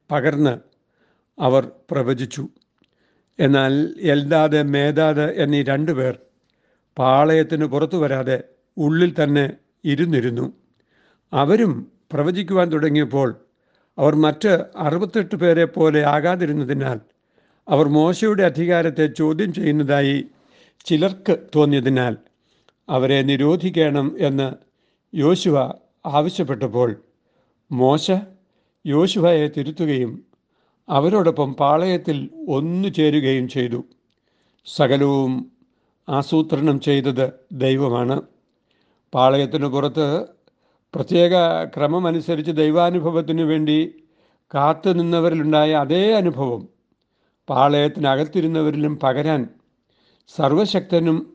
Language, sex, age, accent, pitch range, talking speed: Malayalam, male, 60-79, native, 140-170 Hz, 70 wpm